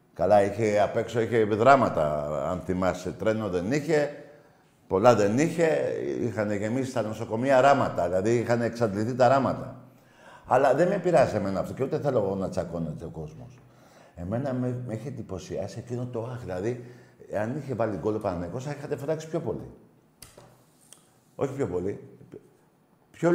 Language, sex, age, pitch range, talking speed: Greek, male, 50-69, 105-135 Hz, 155 wpm